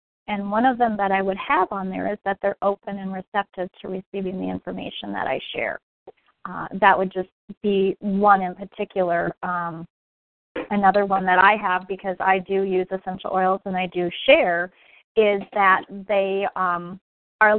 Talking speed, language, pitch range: 175 wpm, English, 185-220 Hz